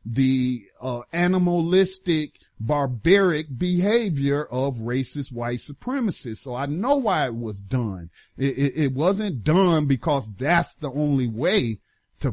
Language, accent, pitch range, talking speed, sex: English, American, 120-155 Hz, 130 wpm, male